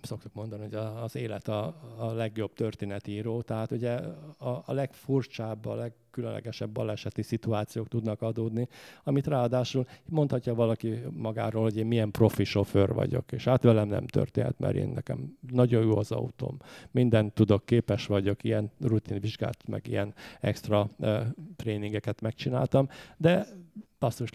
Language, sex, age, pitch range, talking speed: English, male, 50-69, 105-125 Hz, 140 wpm